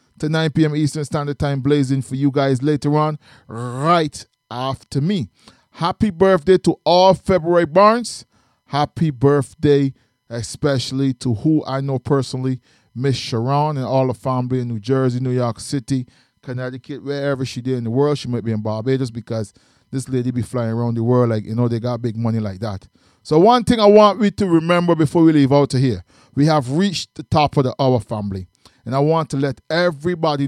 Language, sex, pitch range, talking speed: English, male, 125-160 Hz, 195 wpm